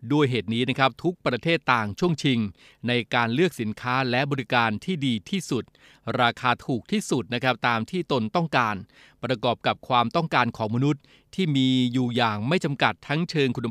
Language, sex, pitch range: Thai, male, 115-140 Hz